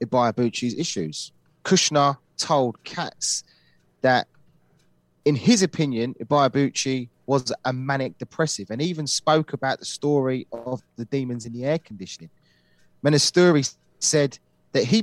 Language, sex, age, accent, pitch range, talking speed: English, male, 30-49, British, 115-150 Hz, 125 wpm